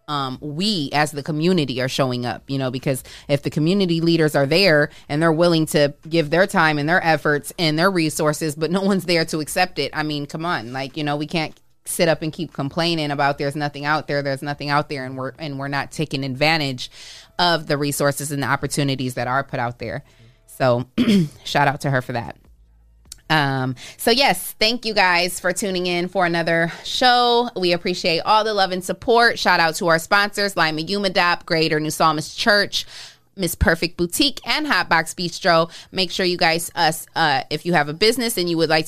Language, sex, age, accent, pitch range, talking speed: English, female, 20-39, American, 145-180 Hz, 210 wpm